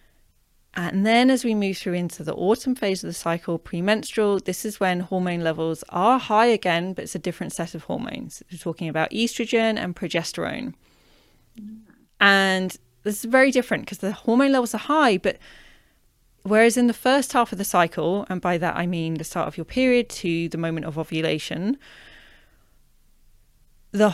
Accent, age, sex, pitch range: British, 30-49, female, 175-245 Hz